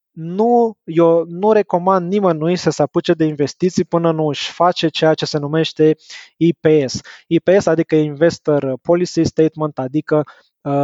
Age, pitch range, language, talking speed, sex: 20-39, 155-185 Hz, Romanian, 145 wpm, male